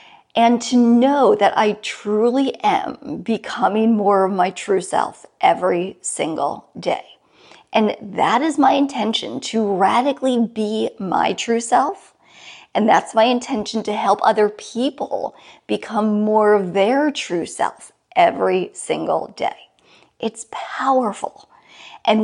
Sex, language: female, English